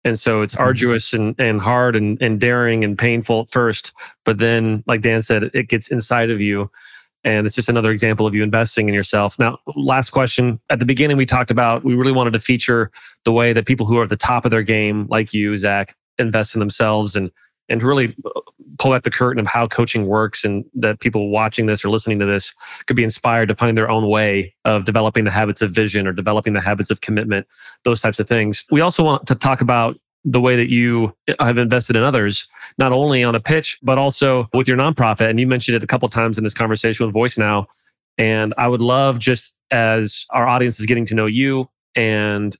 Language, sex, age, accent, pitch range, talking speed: English, male, 30-49, American, 110-125 Hz, 225 wpm